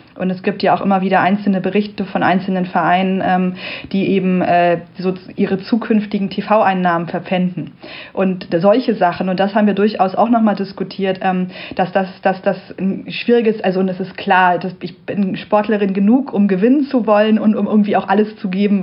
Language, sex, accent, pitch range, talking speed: German, female, German, 180-210 Hz, 190 wpm